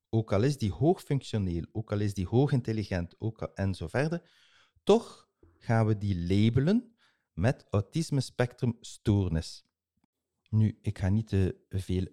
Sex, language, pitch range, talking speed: male, English, 90-120 Hz, 140 wpm